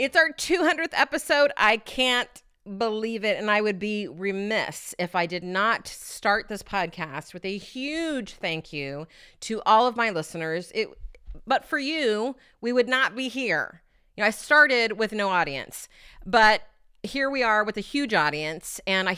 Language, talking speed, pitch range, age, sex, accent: English, 175 wpm, 180-230 Hz, 30-49, female, American